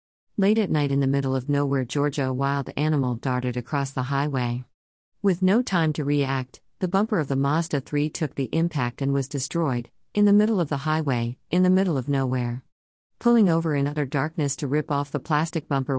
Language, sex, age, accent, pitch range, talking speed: English, female, 50-69, American, 130-160 Hz, 205 wpm